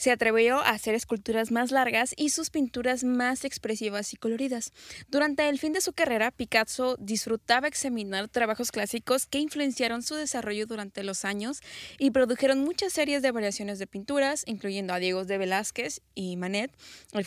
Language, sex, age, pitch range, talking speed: Spanish, female, 10-29, 210-265 Hz, 165 wpm